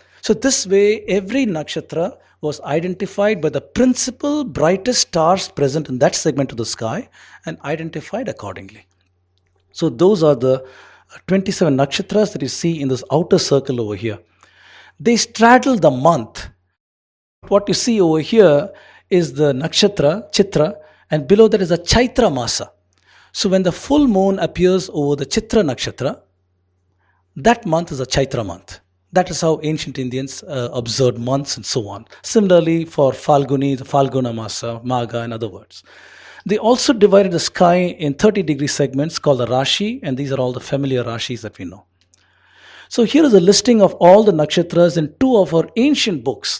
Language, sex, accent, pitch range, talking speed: English, male, Indian, 125-195 Hz, 165 wpm